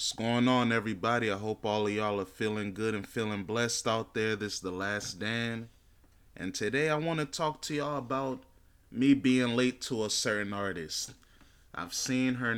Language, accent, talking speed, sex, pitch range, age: English, American, 195 wpm, male, 100-120 Hz, 20-39